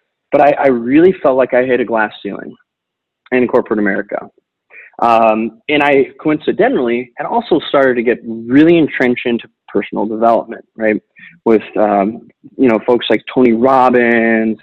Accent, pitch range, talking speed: American, 110-145 Hz, 150 wpm